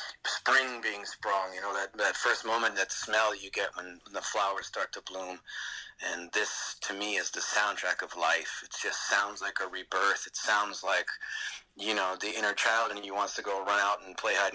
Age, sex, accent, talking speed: 30-49, male, American, 215 wpm